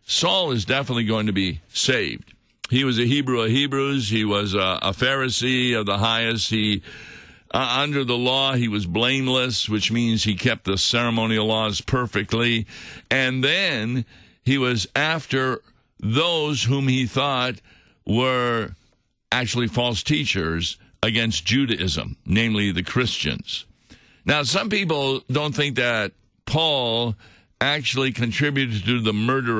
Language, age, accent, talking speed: English, 60-79, American, 135 wpm